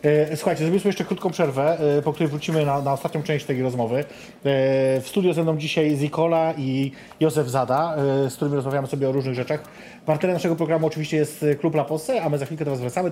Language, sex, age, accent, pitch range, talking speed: Polish, male, 30-49, native, 135-160 Hz, 205 wpm